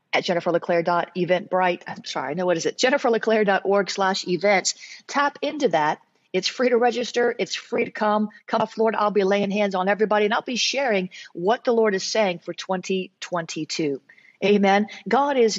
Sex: female